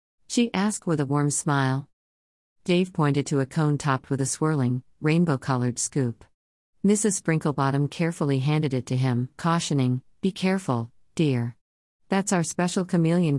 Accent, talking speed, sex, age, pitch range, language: American, 145 wpm, female, 50-69, 130-165 Hz, English